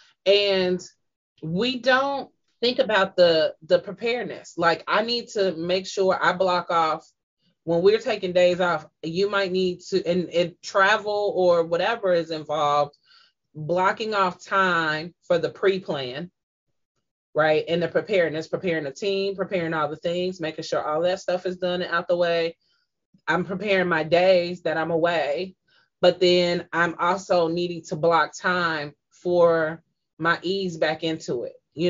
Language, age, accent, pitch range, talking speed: English, 20-39, American, 170-195 Hz, 160 wpm